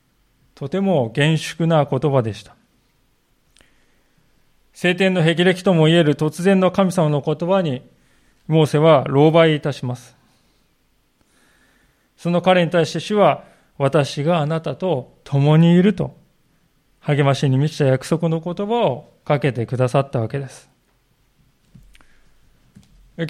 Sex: male